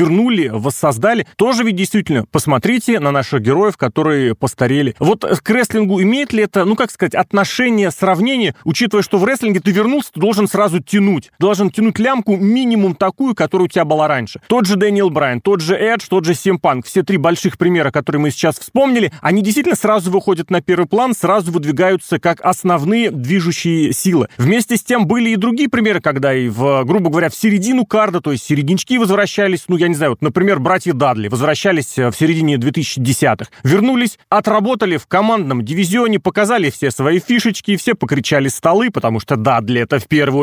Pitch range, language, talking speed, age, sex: 150-210 Hz, Russian, 180 wpm, 30-49, male